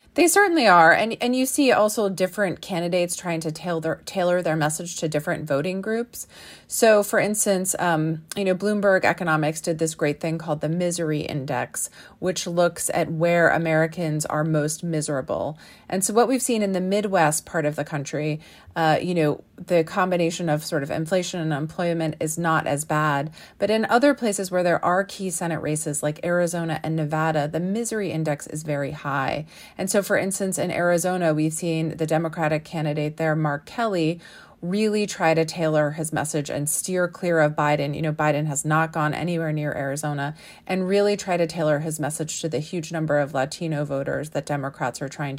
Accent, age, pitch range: American, 30-49, 150-185 Hz